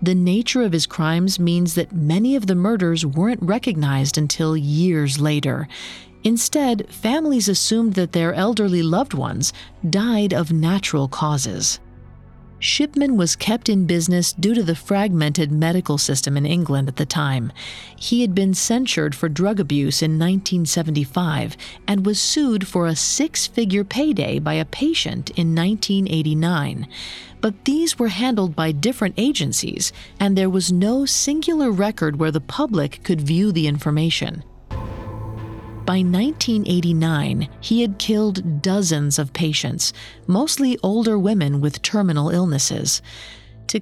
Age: 40-59